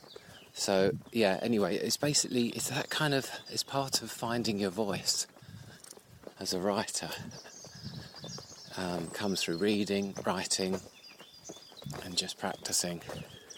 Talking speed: 115 wpm